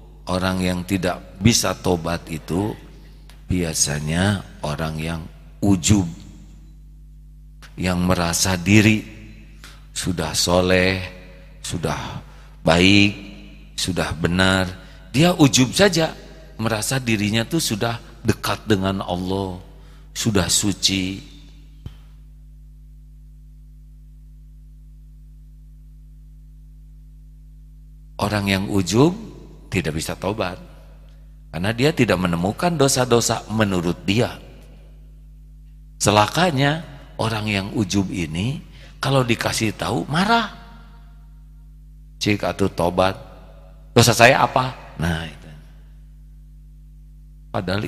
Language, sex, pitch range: Indonesian, male, 95-150 Hz